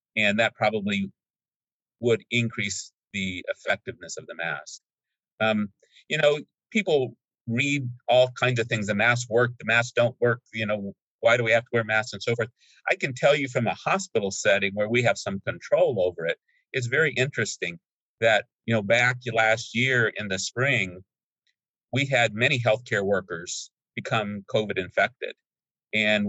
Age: 50-69